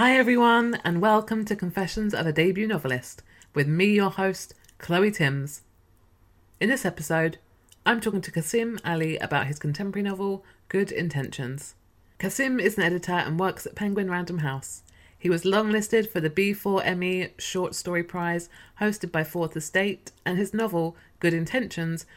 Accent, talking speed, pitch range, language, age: British, 155 wpm, 135-190 Hz, English, 20-39